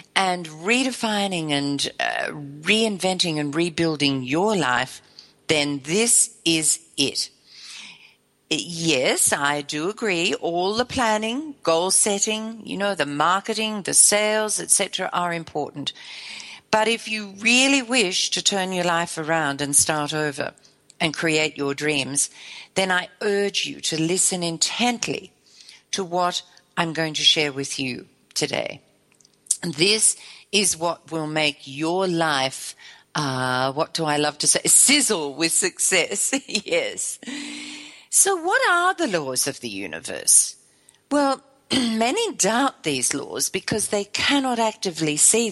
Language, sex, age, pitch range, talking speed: English, female, 50-69, 150-220 Hz, 130 wpm